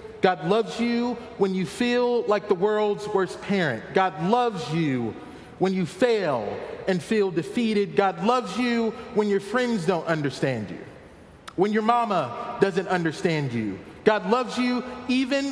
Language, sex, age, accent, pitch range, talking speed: English, male, 40-59, American, 180-225 Hz, 150 wpm